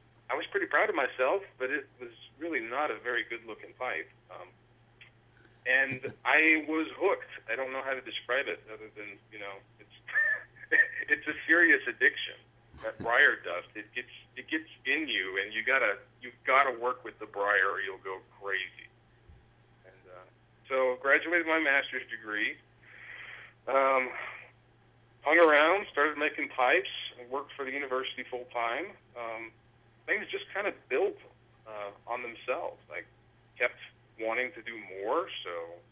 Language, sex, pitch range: English, male, 110-130 Hz